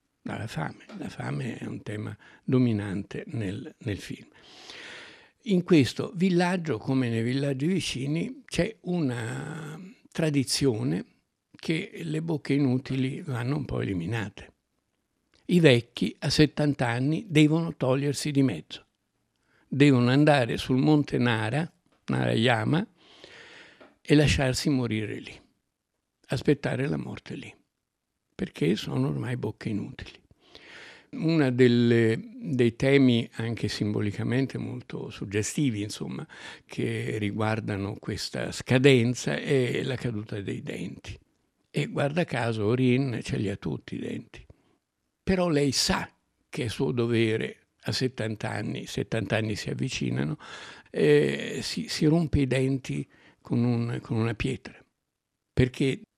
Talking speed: 115 wpm